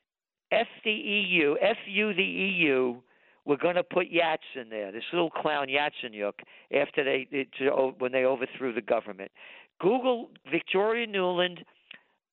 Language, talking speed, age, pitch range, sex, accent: English, 135 wpm, 50-69, 135-190 Hz, male, American